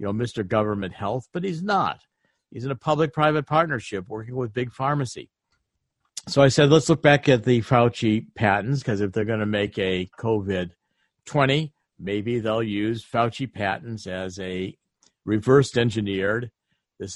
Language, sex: English, male